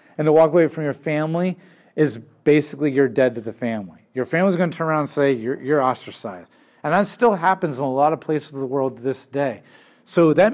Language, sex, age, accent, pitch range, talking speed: English, male, 40-59, American, 140-185 Hz, 240 wpm